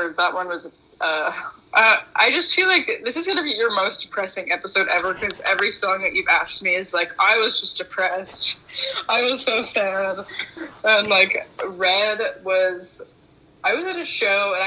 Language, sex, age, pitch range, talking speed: English, female, 20-39, 170-200 Hz, 185 wpm